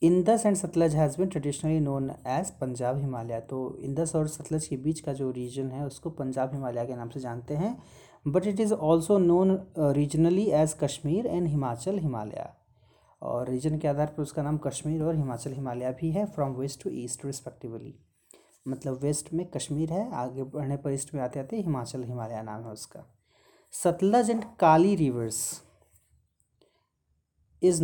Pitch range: 130-165 Hz